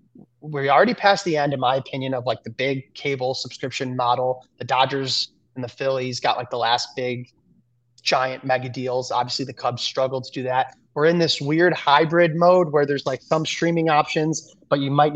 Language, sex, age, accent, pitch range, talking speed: English, male, 30-49, American, 130-165 Hz, 200 wpm